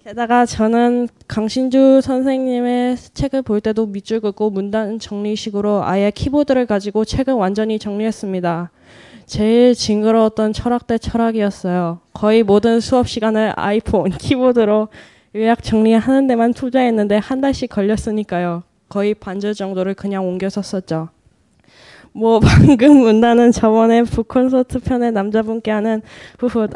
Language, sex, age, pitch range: Korean, female, 10-29, 200-235 Hz